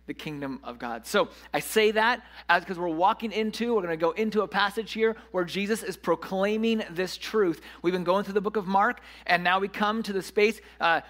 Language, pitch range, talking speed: English, 165-225 Hz, 230 wpm